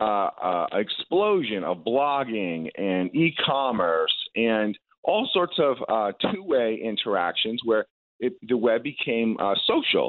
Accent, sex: American, male